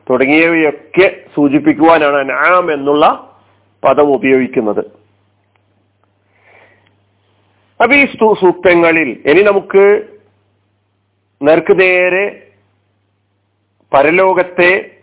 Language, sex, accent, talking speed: Malayalam, male, native, 55 wpm